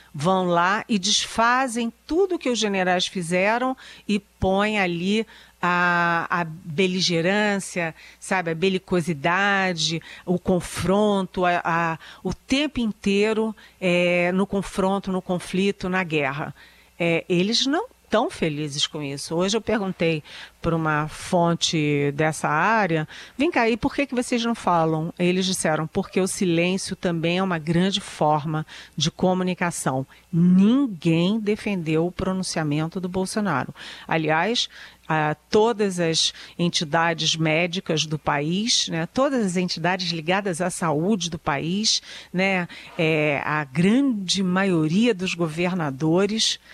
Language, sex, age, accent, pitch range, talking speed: Portuguese, female, 40-59, Brazilian, 165-205 Hz, 120 wpm